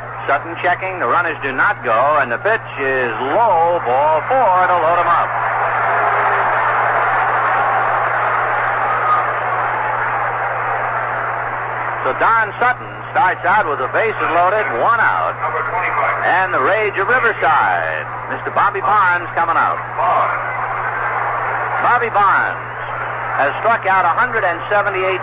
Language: English